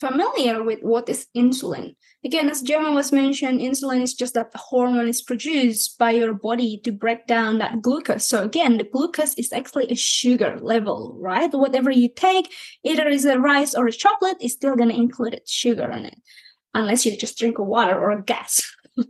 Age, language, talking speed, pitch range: 20-39, English, 190 wpm, 230-290 Hz